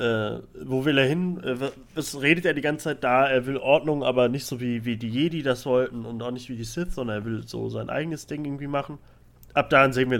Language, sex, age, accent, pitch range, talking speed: German, male, 30-49, German, 120-150 Hz, 260 wpm